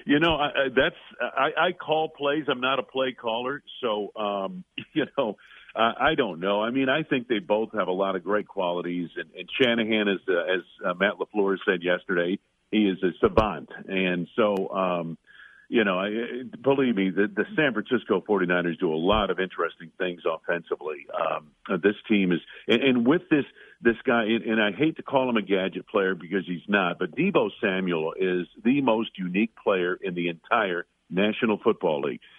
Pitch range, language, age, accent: 95-130 Hz, English, 50-69, American